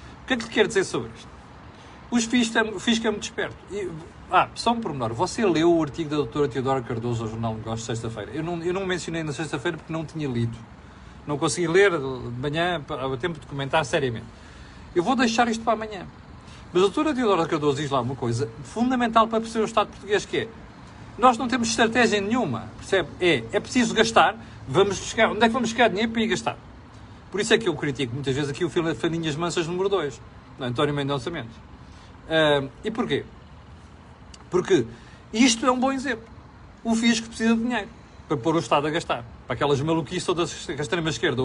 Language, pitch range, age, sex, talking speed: Portuguese, 135-205 Hz, 40-59, male, 205 wpm